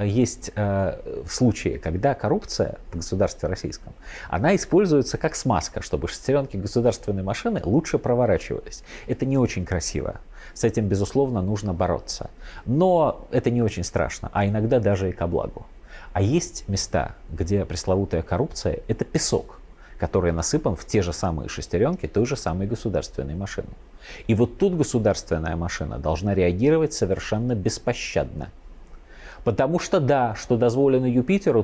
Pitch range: 95-125 Hz